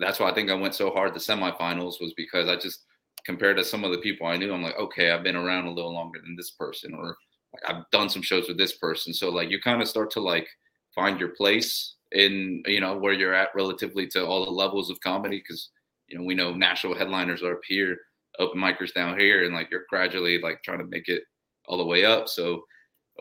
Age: 30-49